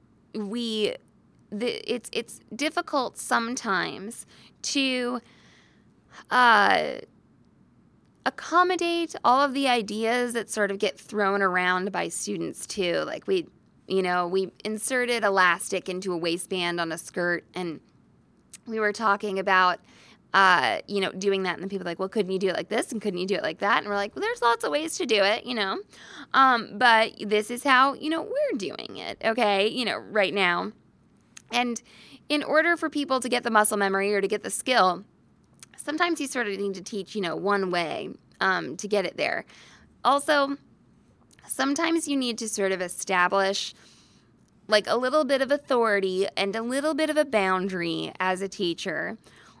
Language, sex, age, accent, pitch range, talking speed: English, female, 20-39, American, 190-260 Hz, 180 wpm